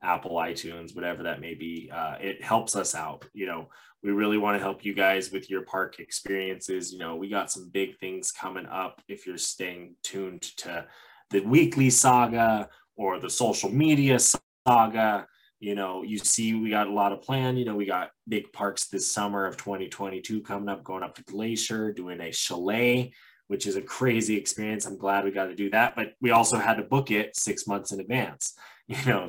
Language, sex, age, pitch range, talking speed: English, male, 20-39, 95-115 Hz, 205 wpm